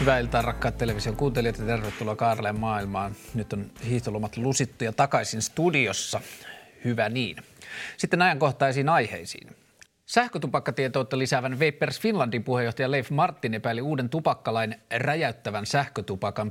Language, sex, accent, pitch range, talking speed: Finnish, male, native, 105-135 Hz, 115 wpm